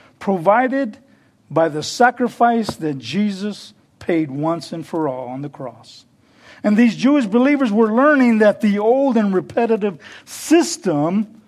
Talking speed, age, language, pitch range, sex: 135 wpm, 50-69, English, 160-220 Hz, male